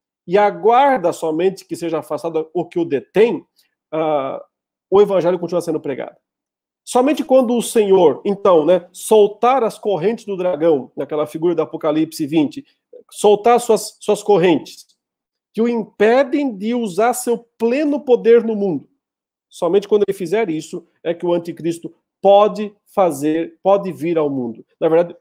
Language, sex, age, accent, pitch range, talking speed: Portuguese, male, 50-69, Brazilian, 165-240 Hz, 150 wpm